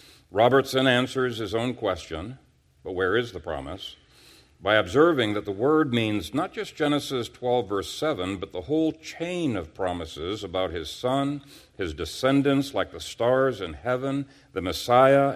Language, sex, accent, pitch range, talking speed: English, male, American, 100-135 Hz, 155 wpm